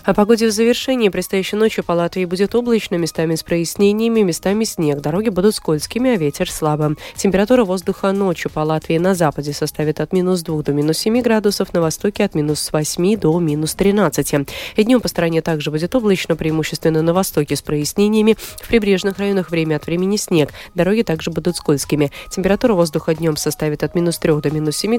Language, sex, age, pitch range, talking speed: Russian, female, 30-49, 150-205 Hz, 180 wpm